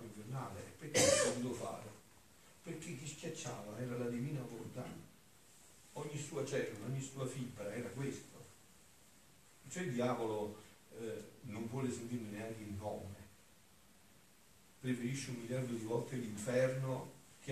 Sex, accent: male, native